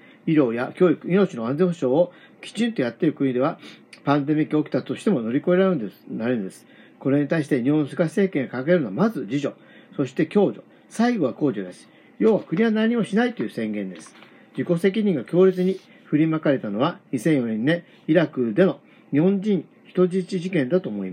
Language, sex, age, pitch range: Japanese, male, 50-69, 140-190 Hz